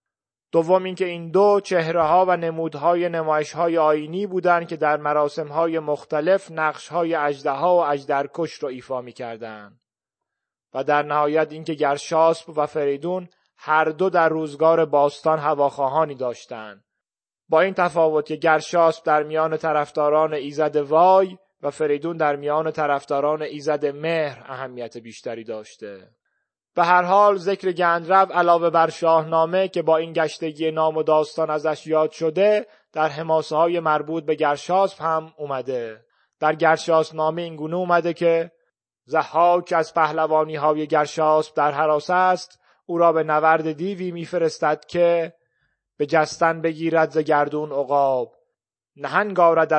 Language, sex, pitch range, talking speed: Persian, male, 150-170 Hz, 135 wpm